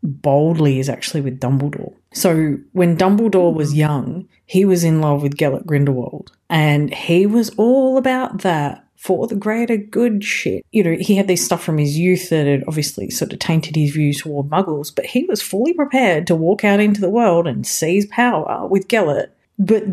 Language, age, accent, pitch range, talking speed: English, 40-59, Australian, 150-195 Hz, 195 wpm